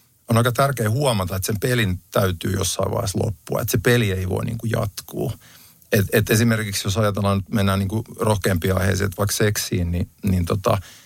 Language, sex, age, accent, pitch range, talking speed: Finnish, male, 50-69, native, 95-120 Hz, 180 wpm